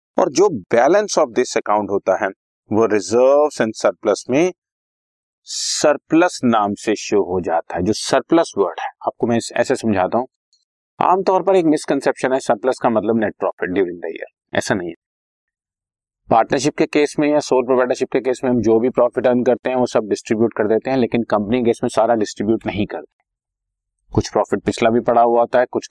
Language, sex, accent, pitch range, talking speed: Hindi, male, native, 105-120 Hz, 195 wpm